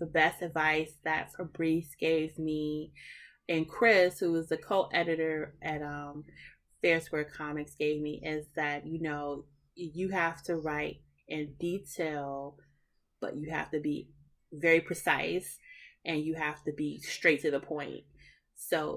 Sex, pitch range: female, 150-170 Hz